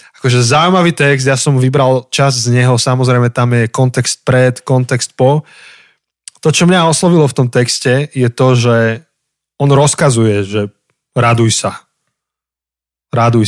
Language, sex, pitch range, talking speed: Slovak, male, 120-145 Hz, 140 wpm